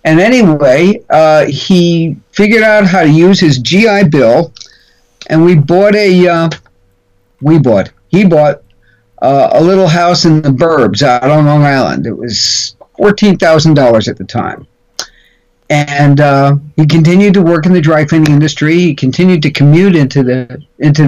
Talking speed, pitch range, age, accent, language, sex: 160 wpm, 145-180 Hz, 50-69, American, English, male